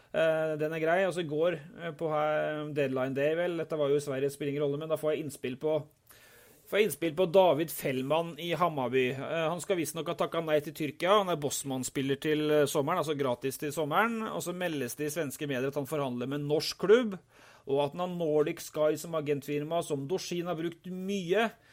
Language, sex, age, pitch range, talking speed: English, male, 30-49, 145-180 Hz, 205 wpm